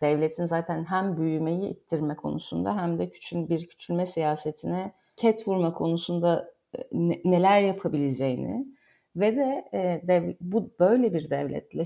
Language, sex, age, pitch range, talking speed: Turkish, female, 40-59, 155-185 Hz, 130 wpm